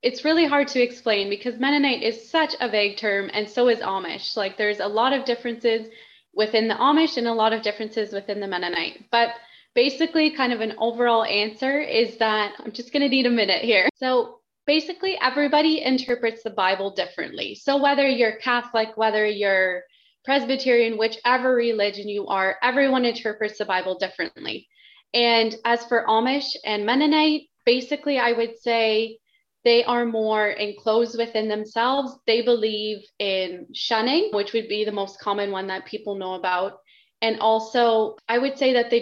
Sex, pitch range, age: female, 205-250 Hz, 20-39